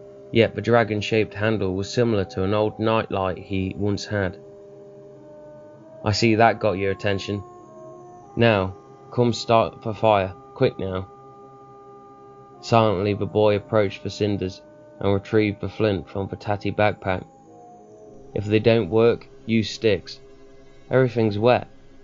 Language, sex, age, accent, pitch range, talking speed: English, male, 20-39, British, 95-115 Hz, 130 wpm